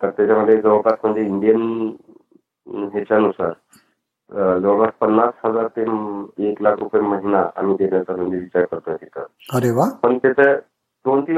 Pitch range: 100-135 Hz